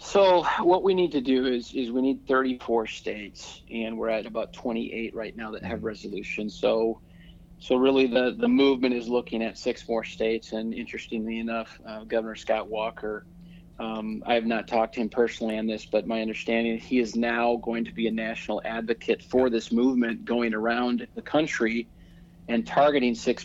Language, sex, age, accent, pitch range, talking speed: English, male, 40-59, American, 110-125 Hz, 190 wpm